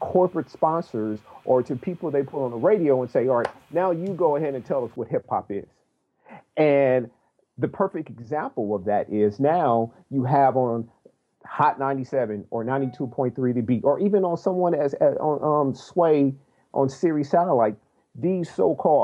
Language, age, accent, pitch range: English, 50-69, American, 135-215 Hz